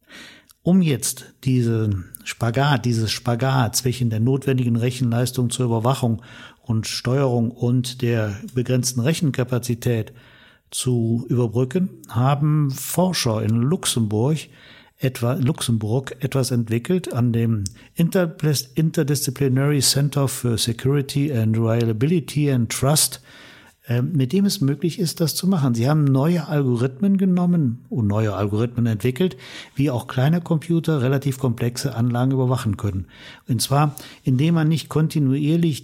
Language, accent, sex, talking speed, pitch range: German, German, male, 120 wpm, 120-145 Hz